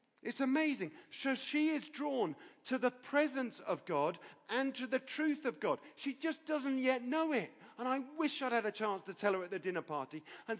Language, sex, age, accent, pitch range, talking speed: English, male, 40-59, British, 175-255 Hz, 215 wpm